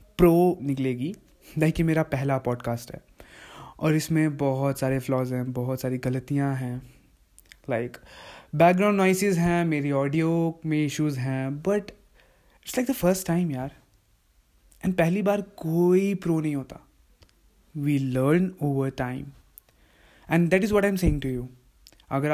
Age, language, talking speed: 20-39, Hindi, 145 wpm